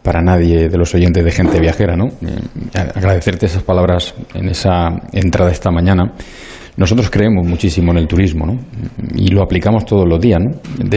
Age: 30-49